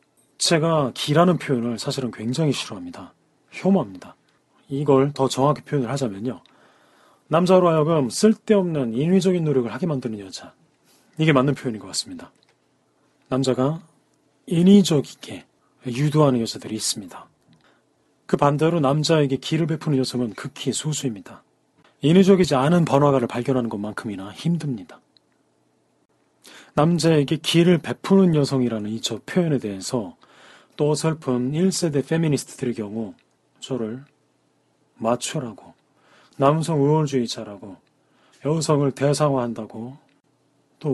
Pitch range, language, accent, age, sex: 120-155 Hz, Korean, native, 30-49, male